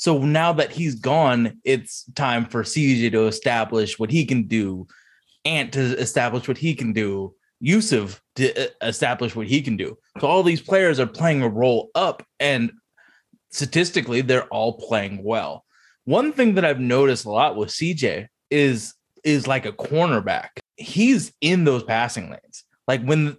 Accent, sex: American, male